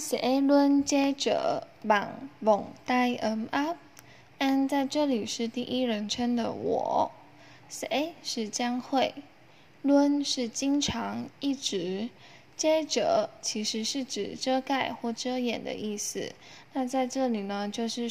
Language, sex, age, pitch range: Vietnamese, female, 10-29, 225-275 Hz